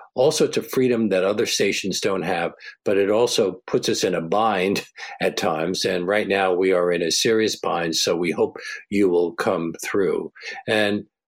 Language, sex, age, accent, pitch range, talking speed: English, male, 50-69, American, 105-135 Hz, 190 wpm